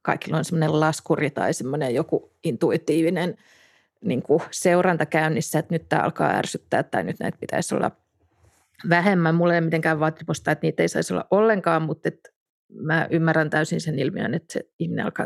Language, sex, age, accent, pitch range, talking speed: Finnish, female, 30-49, native, 165-205 Hz, 160 wpm